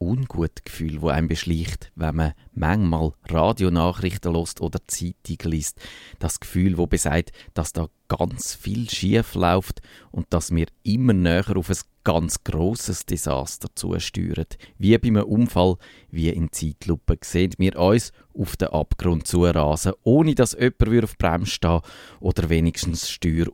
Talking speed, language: 145 wpm, German